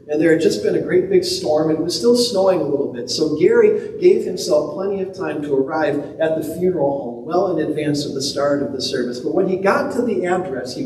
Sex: male